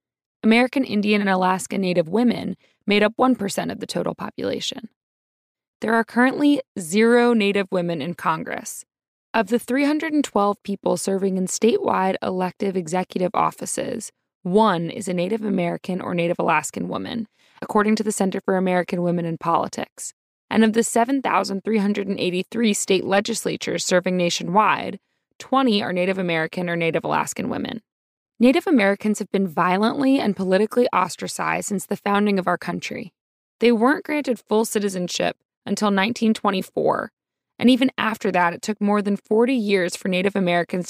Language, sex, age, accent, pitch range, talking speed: English, female, 20-39, American, 185-225 Hz, 145 wpm